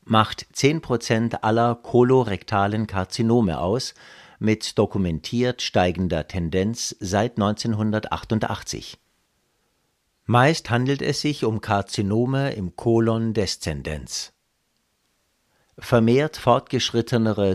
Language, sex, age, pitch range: German, male, 50-69, 95-120 Hz